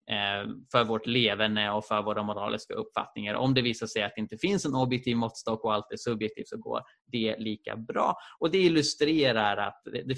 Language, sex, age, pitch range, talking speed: Swedish, male, 20-39, 110-135 Hz, 195 wpm